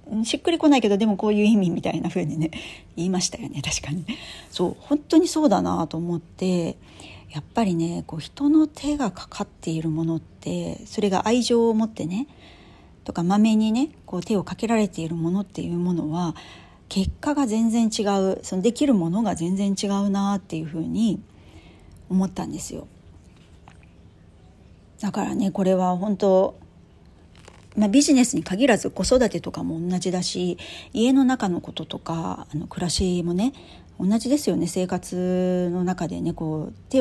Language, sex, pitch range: Japanese, female, 155-225 Hz